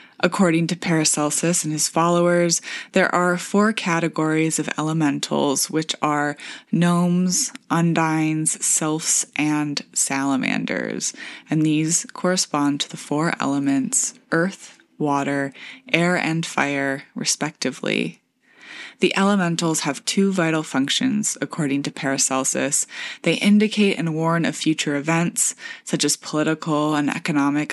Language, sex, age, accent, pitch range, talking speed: English, female, 20-39, American, 150-185 Hz, 115 wpm